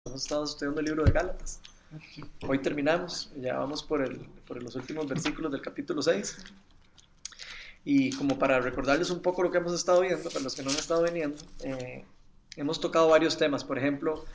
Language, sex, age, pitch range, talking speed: Spanish, male, 20-39, 130-150 Hz, 190 wpm